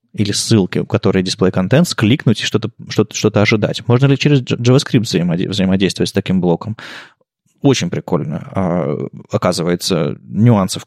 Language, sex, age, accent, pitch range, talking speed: Russian, male, 20-39, native, 100-130 Hz, 115 wpm